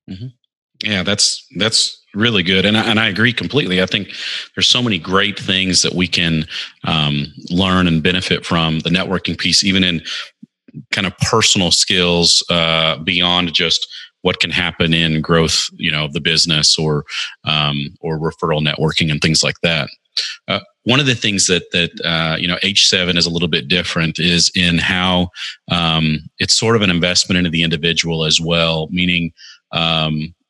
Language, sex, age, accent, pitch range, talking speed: English, male, 30-49, American, 80-95 Hz, 175 wpm